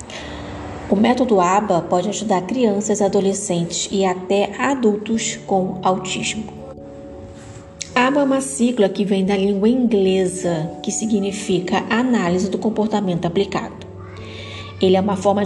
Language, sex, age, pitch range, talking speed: Portuguese, female, 20-39, 185-225 Hz, 120 wpm